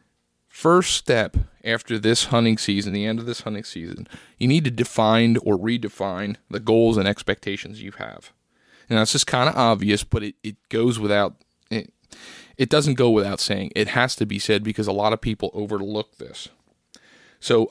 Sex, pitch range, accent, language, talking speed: male, 105-125 Hz, American, English, 170 wpm